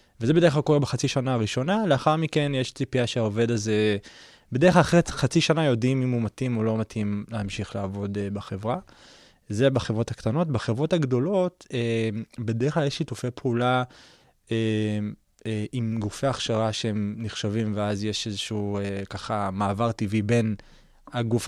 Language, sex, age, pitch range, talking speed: Hebrew, male, 20-39, 105-130 Hz, 140 wpm